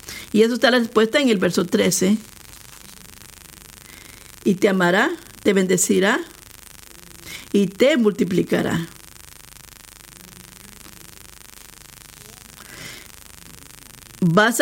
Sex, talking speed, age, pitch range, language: female, 75 wpm, 40-59, 215-265 Hz, Spanish